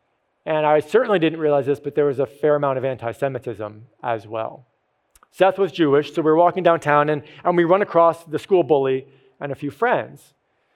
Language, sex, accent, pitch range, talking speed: English, male, American, 130-160 Hz, 195 wpm